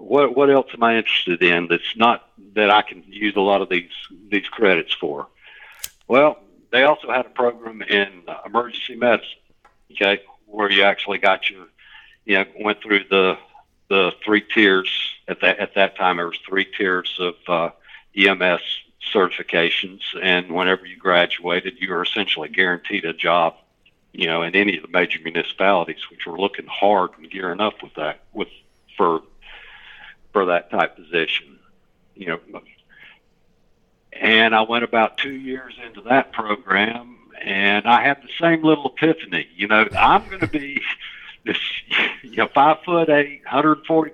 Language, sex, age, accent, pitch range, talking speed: English, male, 60-79, American, 100-140 Hz, 165 wpm